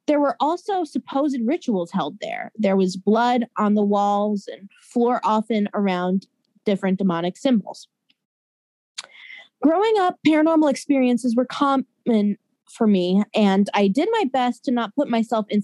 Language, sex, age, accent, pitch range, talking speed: English, female, 20-39, American, 210-280 Hz, 145 wpm